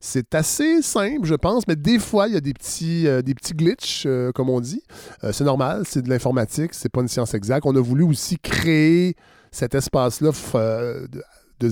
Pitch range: 130-165 Hz